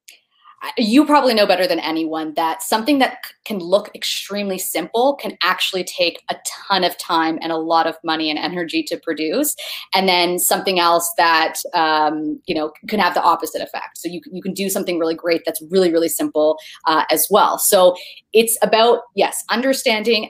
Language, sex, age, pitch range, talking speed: English, female, 30-49, 160-200 Hz, 185 wpm